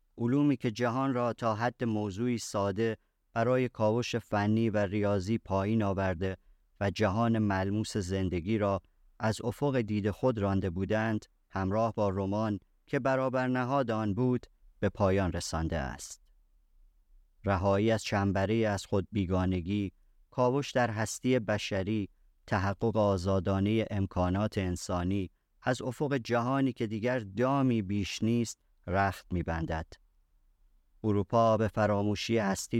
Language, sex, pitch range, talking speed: Persian, male, 95-115 Hz, 120 wpm